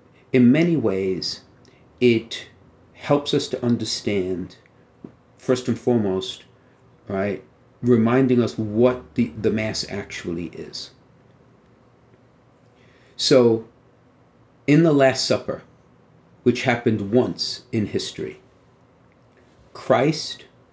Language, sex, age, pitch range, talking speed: English, male, 50-69, 110-130 Hz, 90 wpm